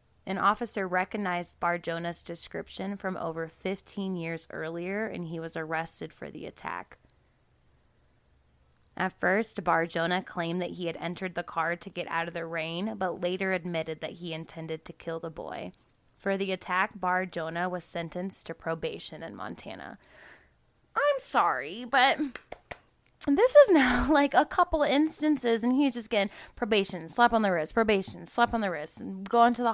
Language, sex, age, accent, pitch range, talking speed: English, female, 20-39, American, 170-240 Hz, 165 wpm